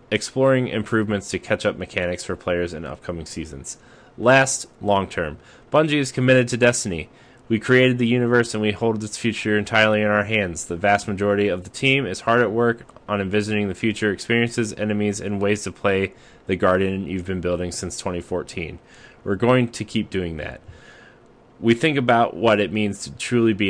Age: 30-49